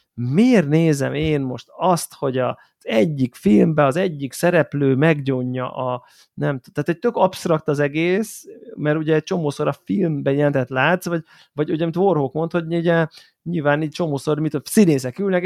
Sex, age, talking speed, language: male, 30-49, 165 wpm, Hungarian